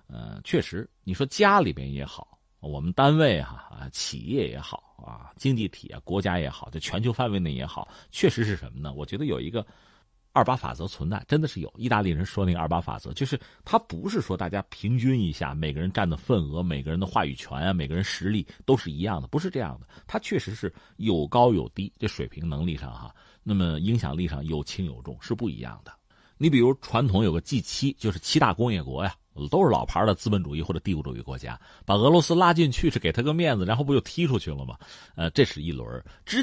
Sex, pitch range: male, 80-130 Hz